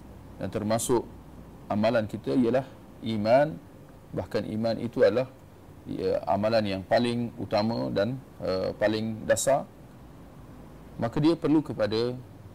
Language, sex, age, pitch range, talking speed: Malay, male, 40-59, 105-140 Hz, 105 wpm